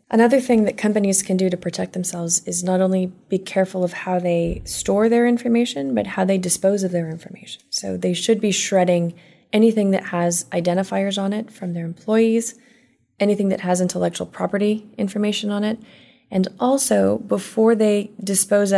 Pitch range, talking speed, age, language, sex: 180-210 Hz, 175 wpm, 20-39, English, female